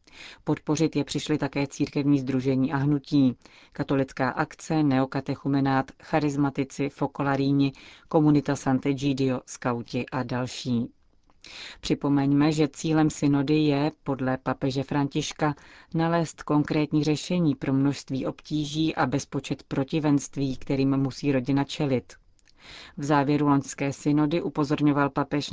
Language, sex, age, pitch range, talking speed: Czech, female, 30-49, 135-150 Hz, 110 wpm